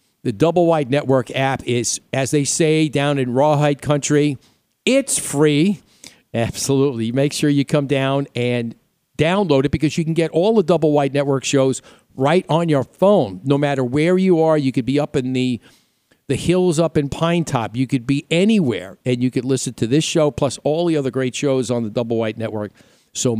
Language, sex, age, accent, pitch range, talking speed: English, male, 50-69, American, 120-155 Hz, 200 wpm